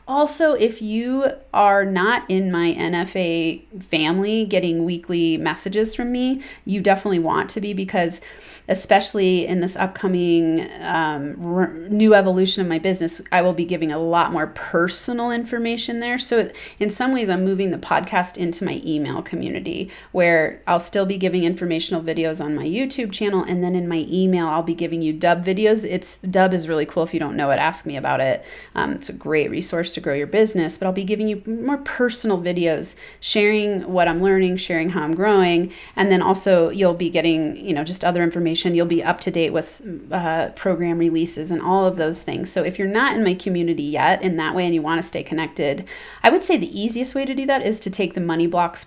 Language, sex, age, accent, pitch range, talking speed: English, female, 30-49, American, 165-200 Hz, 210 wpm